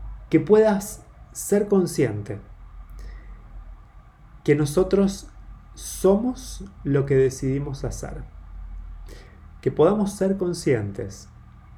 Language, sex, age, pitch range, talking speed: Spanish, male, 30-49, 120-165 Hz, 75 wpm